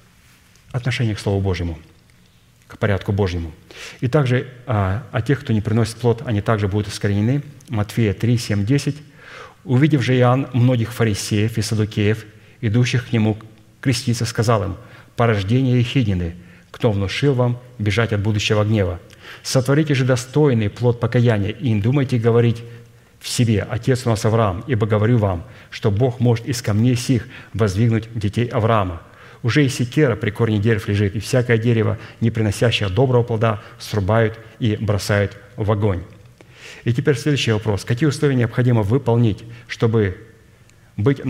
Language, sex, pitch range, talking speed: Russian, male, 105-125 Hz, 150 wpm